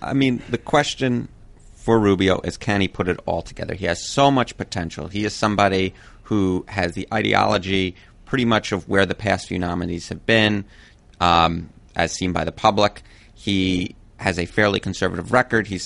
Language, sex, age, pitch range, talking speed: English, male, 30-49, 90-105 Hz, 180 wpm